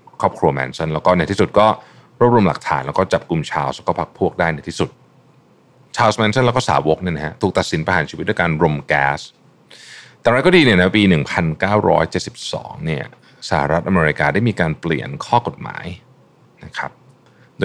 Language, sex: Thai, male